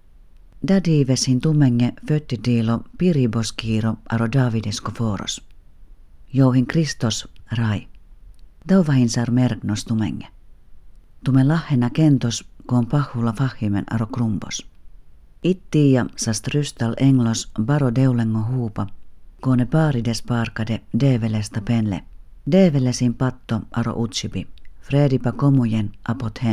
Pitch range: 110-135 Hz